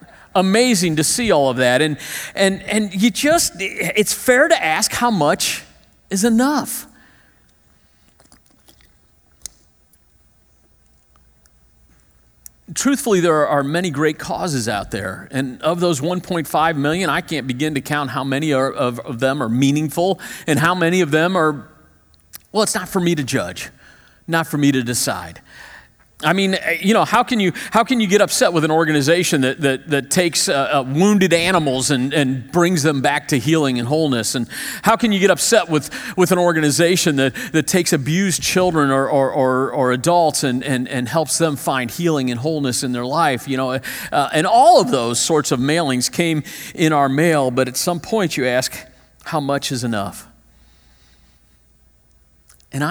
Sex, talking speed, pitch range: male, 170 wpm, 130-180 Hz